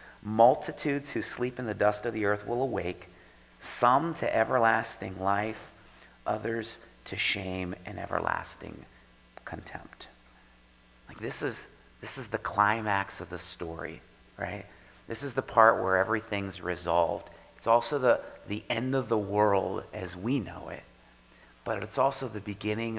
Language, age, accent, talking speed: English, 40-59, American, 145 wpm